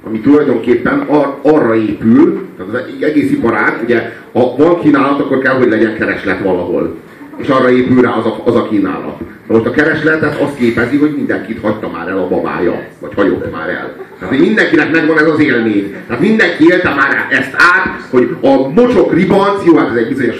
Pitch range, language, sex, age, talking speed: 140-200 Hz, Hungarian, male, 40-59, 190 wpm